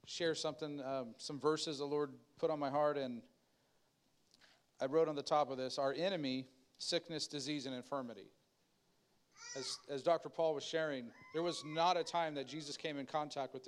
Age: 40-59